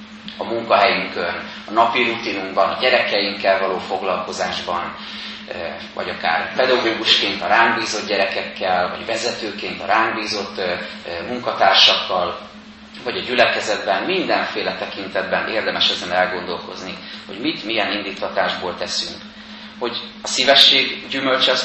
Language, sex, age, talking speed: Hungarian, male, 30-49, 100 wpm